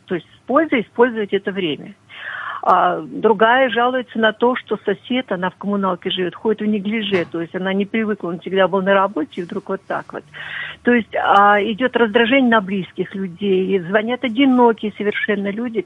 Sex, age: female, 50-69